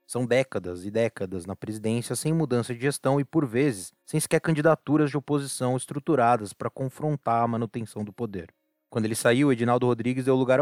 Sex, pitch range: male, 115-145 Hz